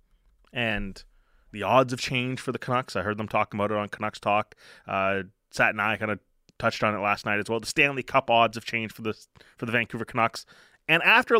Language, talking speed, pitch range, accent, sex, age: English, 230 wpm, 120-170 Hz, American, male, 20-39